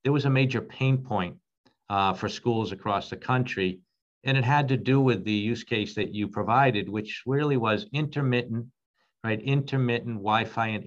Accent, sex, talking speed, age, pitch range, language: American, male, 175 wpm, 50-69, 105-130 Hz, English